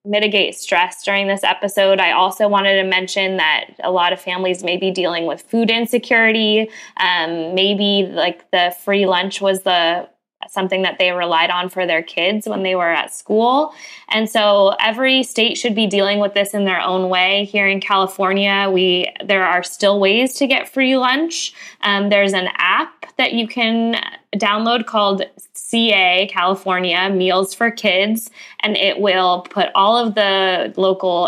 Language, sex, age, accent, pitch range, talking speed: English, female, 10-29, American, 180-215 Hz, 170 wpm